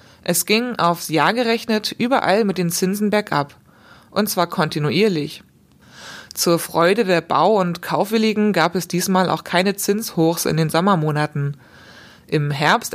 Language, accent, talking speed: German, German, 140 wpm